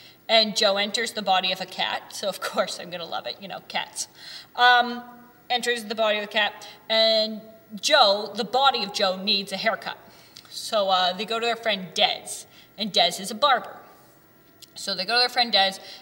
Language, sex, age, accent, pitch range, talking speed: English, female, 30-49, American, 195-250 Hz, 200 wpm